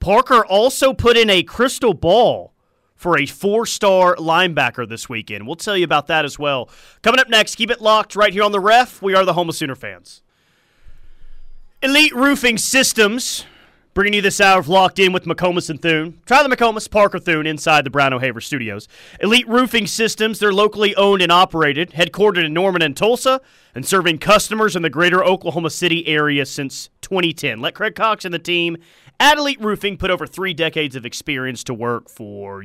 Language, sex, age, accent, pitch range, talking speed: English, male, 30-49, American, 145-200 Hz, 190 wpm